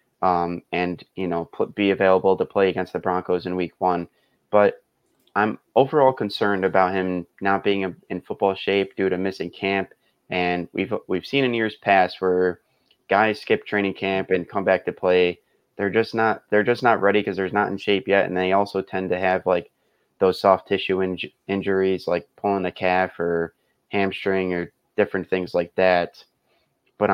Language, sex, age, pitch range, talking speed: English, male, 20-39, 90-100 Hz, 190 wpm